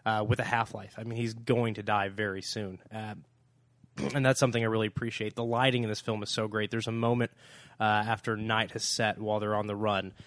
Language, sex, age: English, male, 20-39